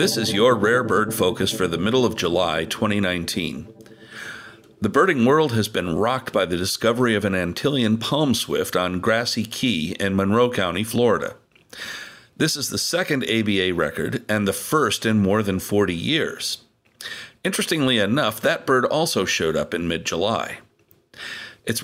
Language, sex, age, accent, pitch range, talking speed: English, male, 50-69, American, 95-120 Hz, 155 wpm